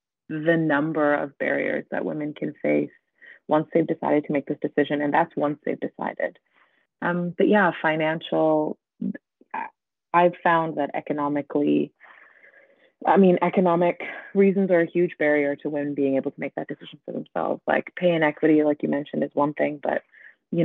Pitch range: 145-170 Hz